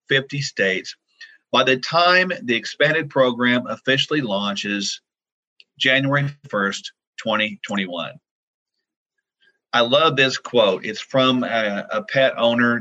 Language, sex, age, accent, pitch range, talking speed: English, male, 50-69, American, 115-165 Hz, 110 wpm